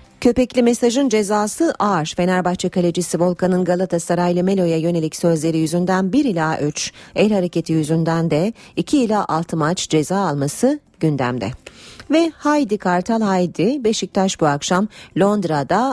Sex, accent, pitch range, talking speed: female, native, 155-215 Hz, 130 wpm